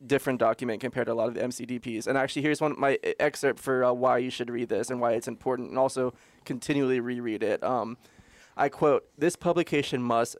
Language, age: English, 20-39